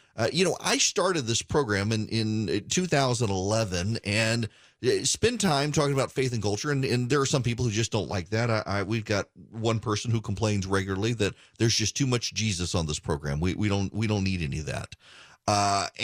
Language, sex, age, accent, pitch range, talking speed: English, male, 30-49, American, 100-130 Hz, 215 wpm